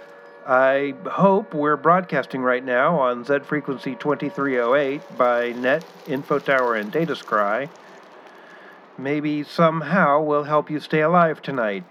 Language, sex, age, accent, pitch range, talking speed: English, male, 50-69, American, 125-165 Hz, 115 wpm